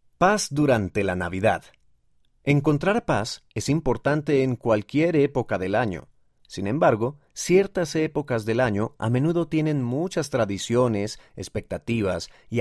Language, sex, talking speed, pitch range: Spanish, male, 125 wpm, 110-150 Hz